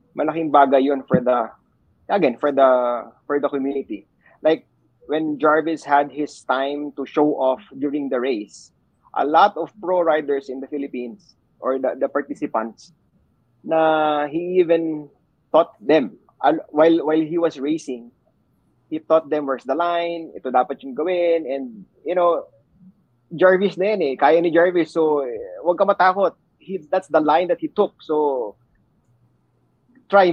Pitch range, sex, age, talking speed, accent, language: 140-190 Hz, male, 20-39, 145 wpm, Filipino, English